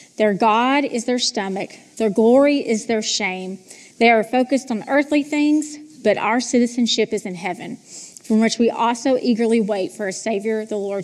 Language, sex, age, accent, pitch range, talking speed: English, female, 30-49, American, 215-275 Hz, 180 wpm